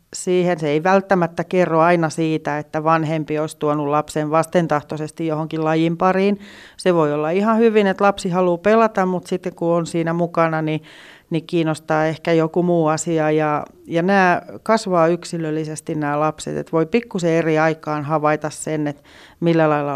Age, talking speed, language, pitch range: 40-59, 170 wpm, Finnish, 155-185 Hz